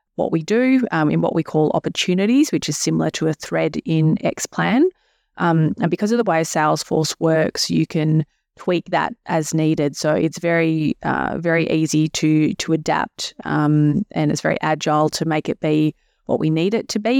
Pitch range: 155-170 Hz